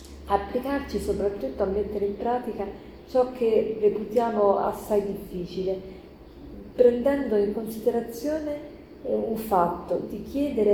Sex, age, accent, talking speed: female, 40-59, native, 100 wpm